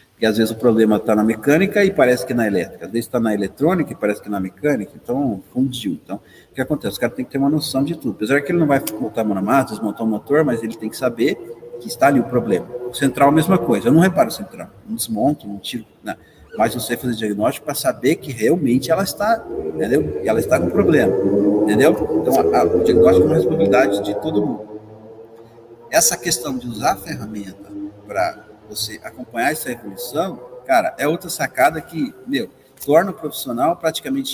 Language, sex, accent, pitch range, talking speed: Portuguese, male, Brazilian, 115-180 Hz, 225 wpm